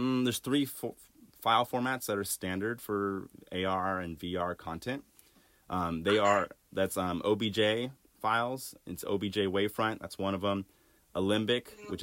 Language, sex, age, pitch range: English, male, 30-49, 95-110 Hz